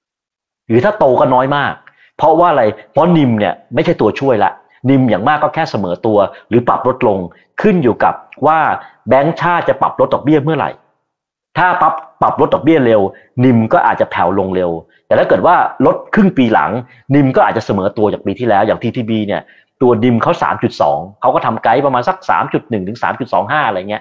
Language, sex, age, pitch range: Thai, male, 30-49, 110-150 Hz